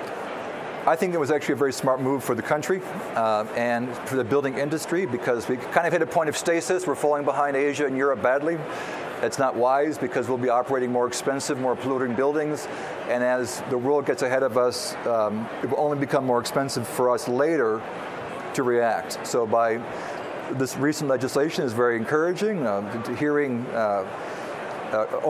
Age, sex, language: 40-59, male, English